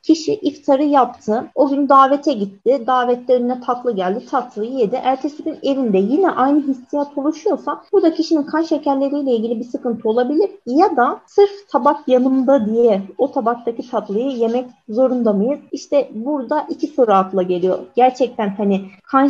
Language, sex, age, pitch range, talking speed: Turkish, female, 30-49, 210-275 Hz, 150 wpm